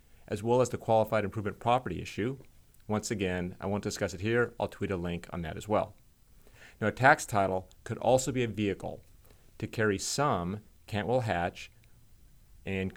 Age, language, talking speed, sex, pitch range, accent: 40-59, English, 175 wpm, male, 95-125 Hz, American